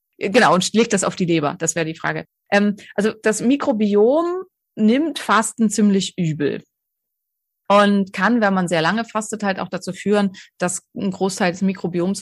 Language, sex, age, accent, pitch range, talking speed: German, female, 30-49, German, 165-220 Hz, 170 wpm